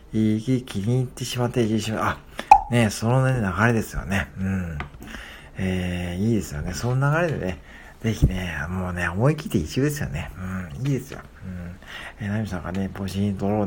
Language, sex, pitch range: Japanese, male, 80-110 Hz